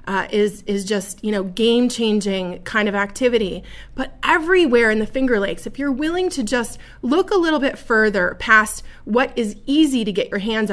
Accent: American